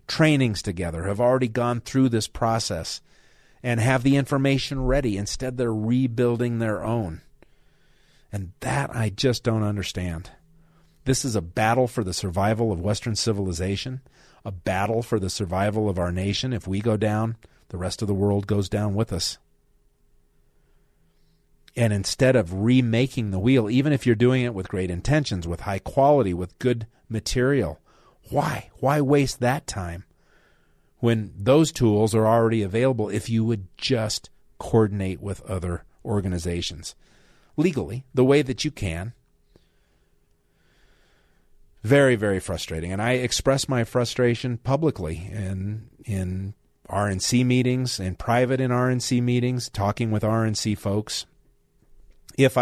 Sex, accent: male, American